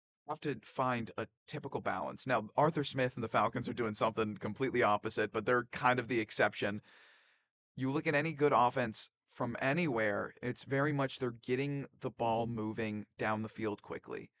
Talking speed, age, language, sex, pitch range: 180 wpm, 30-49, English, male, 110-140 Hz